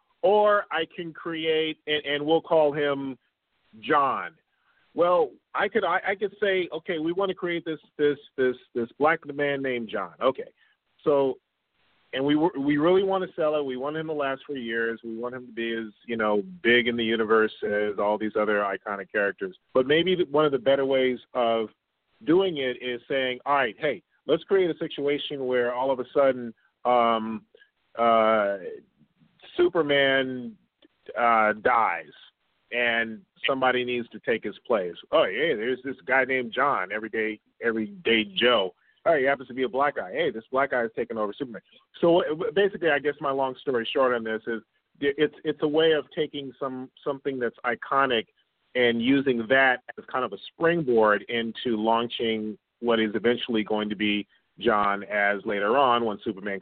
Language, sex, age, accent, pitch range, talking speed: English, male, 40-59, American, 115-150 Hz, 180 wpm